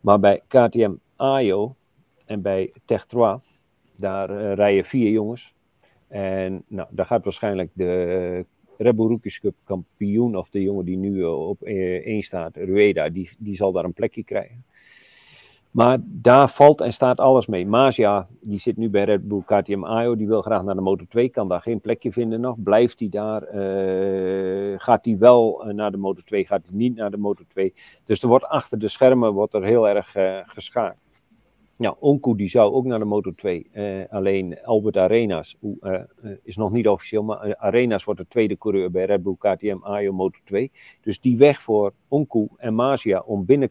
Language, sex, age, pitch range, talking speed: English, male, 50-69, 95-115 Hz, 180 wpm